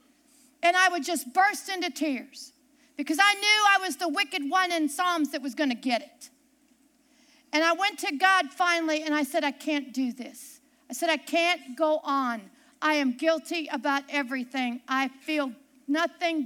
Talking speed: 180 wpm